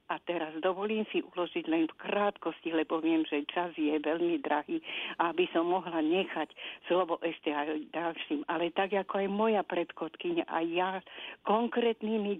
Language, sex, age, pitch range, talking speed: Slovak, female, 50-69, 165-205 Hz, 155 wpm